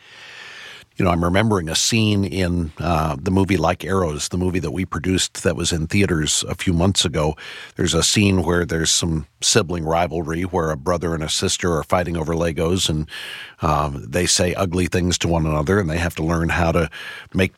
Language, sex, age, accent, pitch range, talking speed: English, male, 50-69, American, 85-105 Hz, 205 wpm